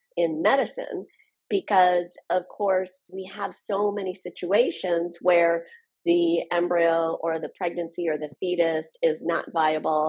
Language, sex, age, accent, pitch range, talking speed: English, female, 40-59, American, 155-205 Hz, 130 wpm